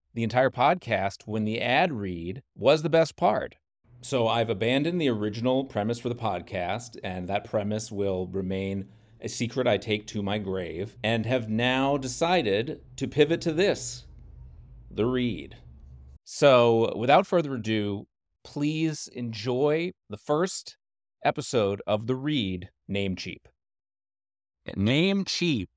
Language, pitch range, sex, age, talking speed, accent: English, 95-130 Hz, male, 30-49, 130 wpm, American